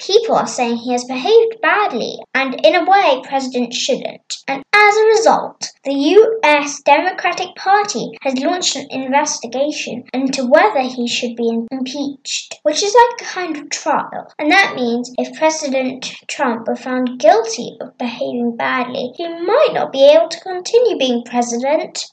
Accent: British